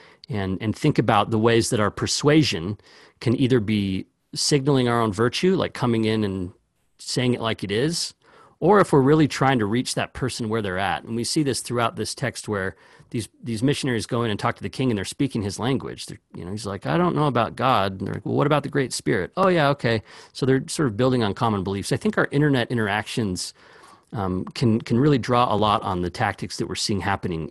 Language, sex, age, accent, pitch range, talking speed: English, male, 40-59, American, 105-135 Hz, 240 wpm